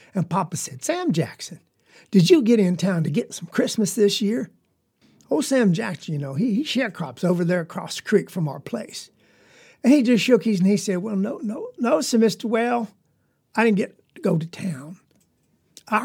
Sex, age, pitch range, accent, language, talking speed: male, 50-69, 165-220 Hz, American, English, 210 wpm